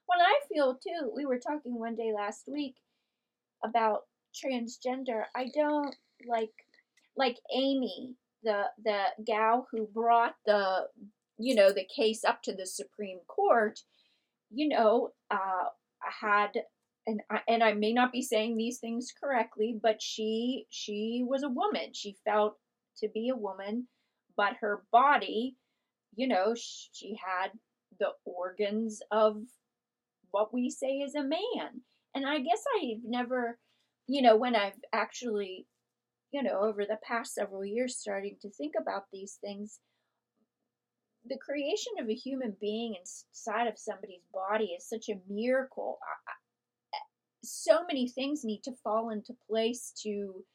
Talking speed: 145 wpm